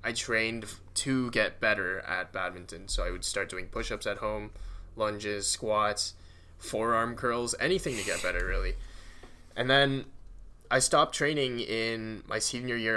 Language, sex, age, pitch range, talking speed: English, male, 10-29, 105-125 Hz, 155 wpm